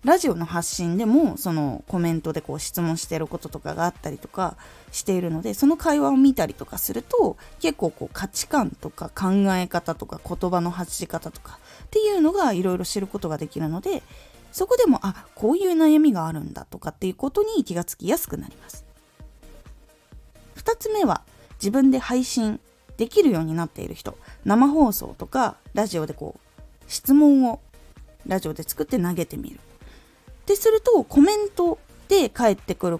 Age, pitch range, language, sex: 20-39, 170-290 Hz, Japanese, female